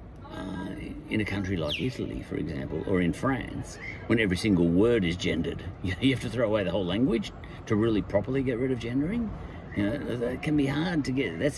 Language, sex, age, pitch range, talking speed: English, male, 50-69, 95-145 Hz, 210 wpm